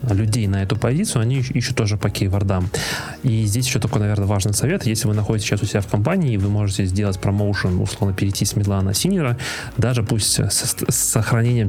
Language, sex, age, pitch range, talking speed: Russian, male, 20-39, 100-115 Hz, 190 wpm